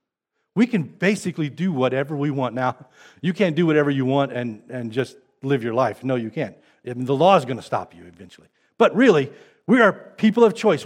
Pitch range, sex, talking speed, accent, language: 145-210 Hz, male, 210 wpm, American, English